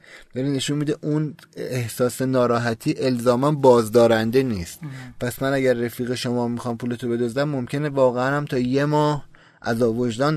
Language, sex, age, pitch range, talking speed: Persian, male, 30-49, 120-150 Hz, 145 wpm